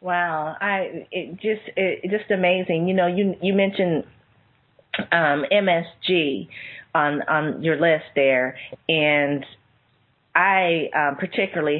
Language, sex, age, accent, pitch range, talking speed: English, female, 30-49, American, 165-215 Hz, 130 wpm